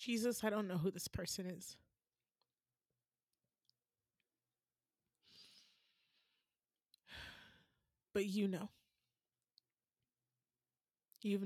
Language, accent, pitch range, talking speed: English, American, 195-235 Hz, 65 wpm